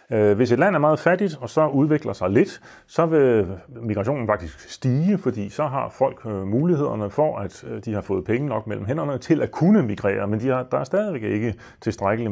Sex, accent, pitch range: male, native, 100-130 Hz